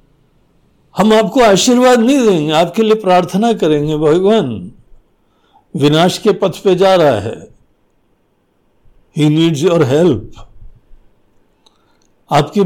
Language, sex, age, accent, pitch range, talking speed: Hindi, male, 60-79, native, 125-185 Hz, 105 wpm